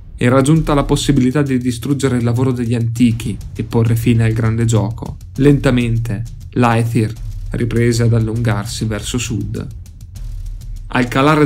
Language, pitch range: Italian, 110-135 Hz